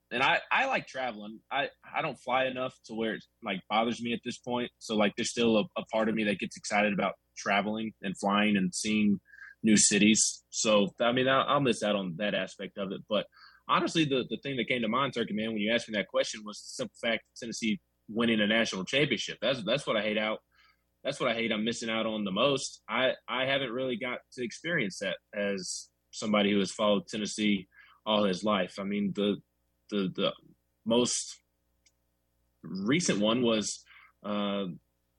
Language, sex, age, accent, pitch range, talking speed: English, male, 20-39, American, 100-115 Hz, 205 wpm